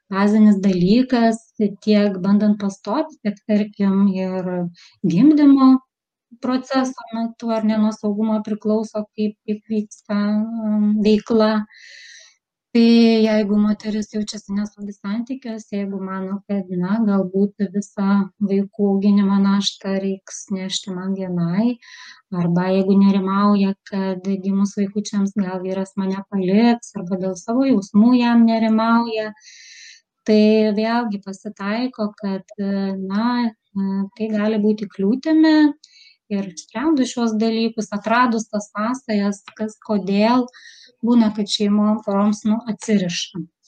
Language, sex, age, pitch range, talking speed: English, female, 20-39, 200-225 Hz, 100 wpm